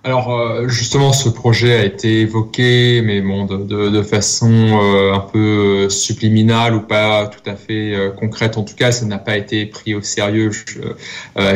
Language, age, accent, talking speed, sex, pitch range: French, 20-39, French, 170 wpm, male, 100-115 Hz